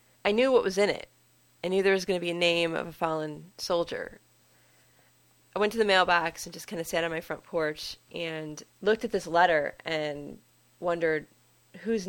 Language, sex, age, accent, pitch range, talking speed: English, female, 30-49, American, 155-185 Hz, 205 wpm